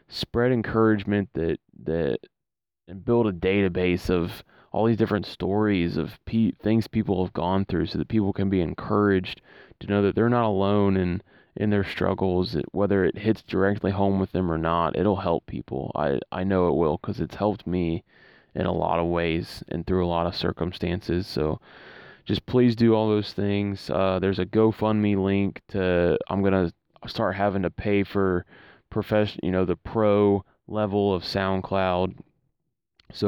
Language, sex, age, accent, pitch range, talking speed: English, male, 20-39, American, 90-100 Hz, 175 wpm